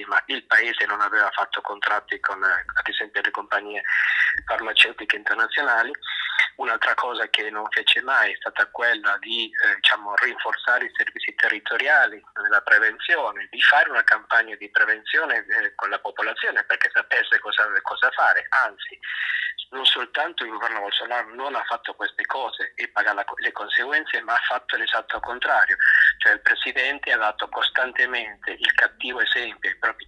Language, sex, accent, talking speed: Italian, male, native, 155 wpm